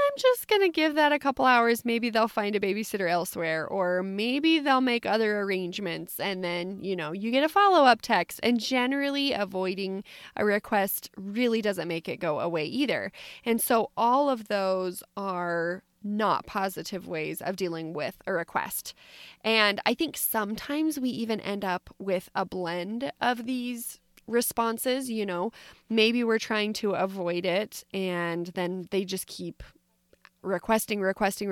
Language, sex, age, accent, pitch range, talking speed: English, female, 20-39, American, 185-235 Hz, 160 wpm